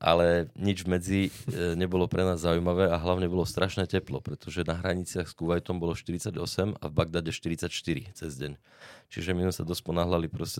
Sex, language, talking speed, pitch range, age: male, Czech, 175 wpm, 85-100 Hz, 20-39